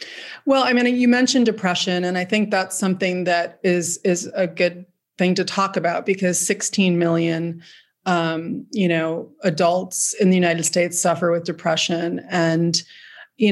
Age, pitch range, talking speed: 30-49, 170-200 Hz, 160 wpm